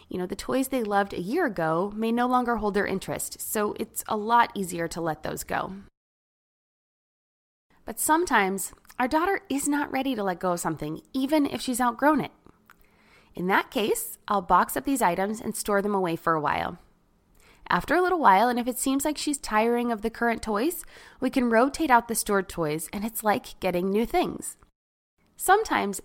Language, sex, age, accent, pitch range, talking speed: English, female, 20-39, American, 185-265 Hz, 195 wpm